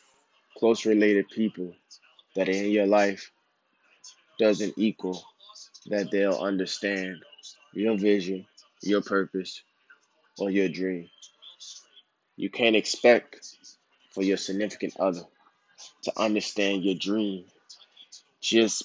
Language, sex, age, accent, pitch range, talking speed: English, male, 20-39, American, 95-105 Hz, 100 wpm